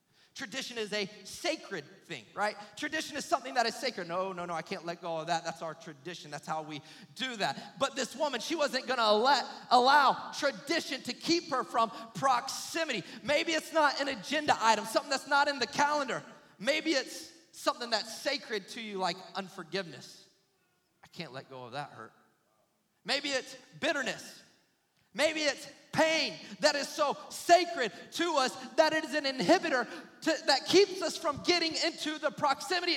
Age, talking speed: 30-49, 175 wpm